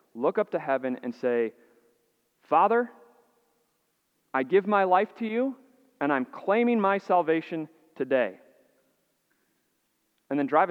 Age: 30-49